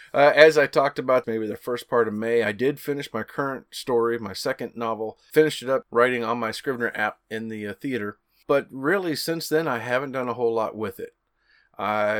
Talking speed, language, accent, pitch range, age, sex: 220 wpm, English, American, 110-125 Hz, 30-49, male